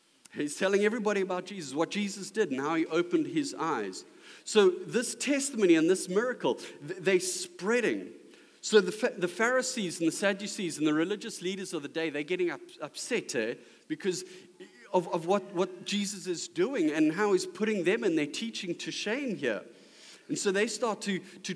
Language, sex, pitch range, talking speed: English, male, 175-230 Hz, 180 wpm